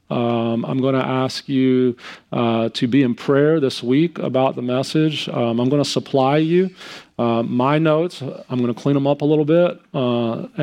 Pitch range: 130-155 Hz